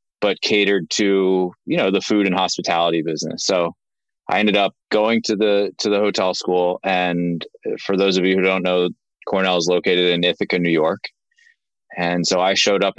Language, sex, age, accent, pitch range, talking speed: English, male, 20-39, American, 85-95 Hz, 190 wpm